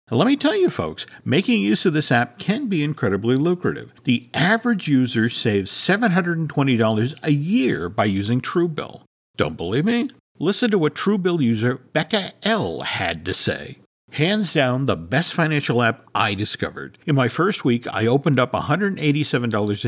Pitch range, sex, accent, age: 115-175 Hz, male, American, 50-69